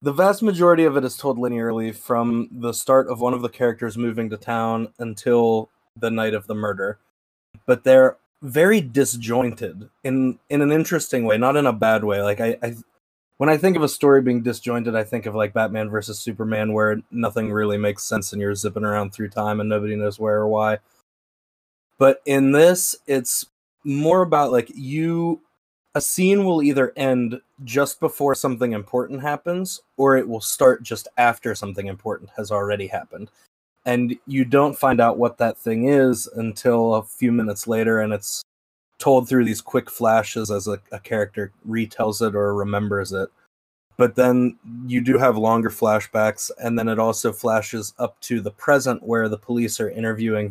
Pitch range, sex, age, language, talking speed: 110-130 Hz, male, 20-39, English, 185 wpm